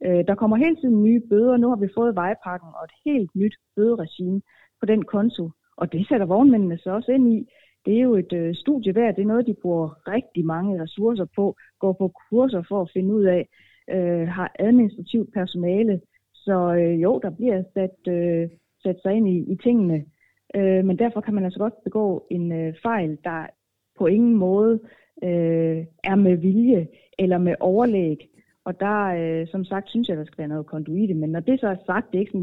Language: Danish